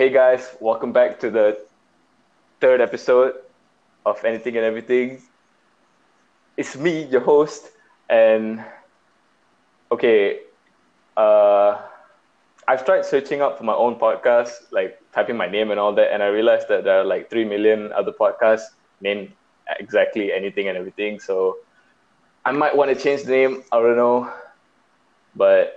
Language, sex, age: English, male, 20-39